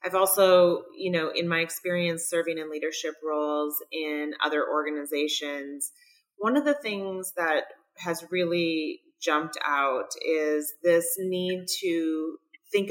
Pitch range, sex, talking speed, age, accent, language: 155-190 Hz, female, 130 wpm, 30-49, American, English